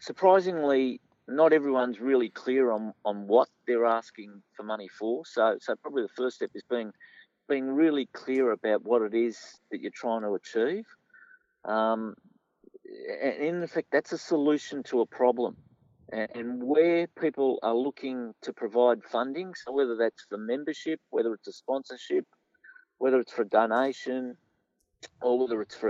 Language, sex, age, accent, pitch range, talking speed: English, male, 50-69, Australian, 115-145 Hz, 160 wpm